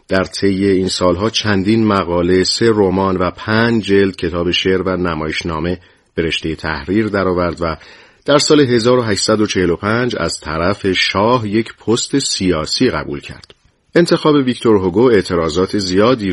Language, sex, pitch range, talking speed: Persian, male, 90-105 Hz, 125 wpm